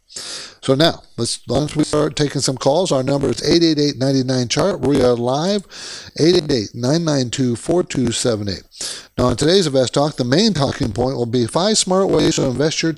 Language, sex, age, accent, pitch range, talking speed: English, male, 60-79, American, 120-170 Hz, 180 wpm